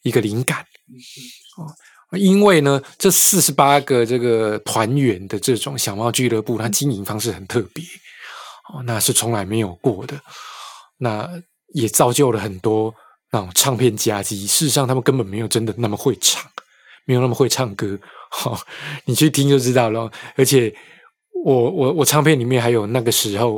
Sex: male